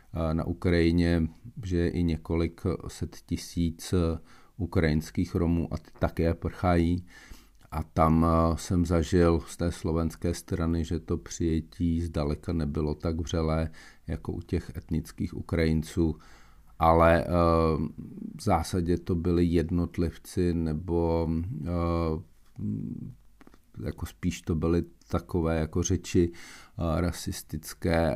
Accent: native